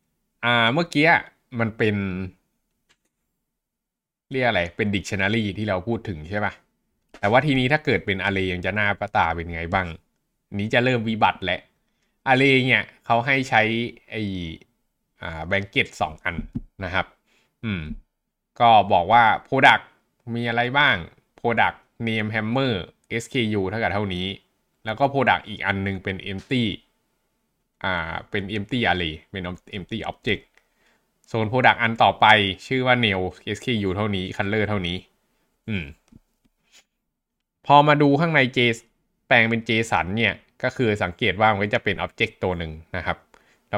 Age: 20-39